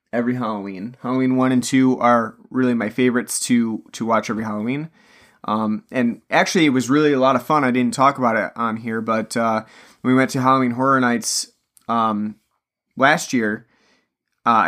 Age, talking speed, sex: 30-49, 185 wpm, male